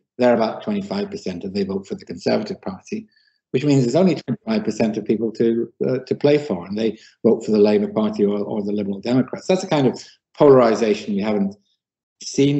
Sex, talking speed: male, 200 wpm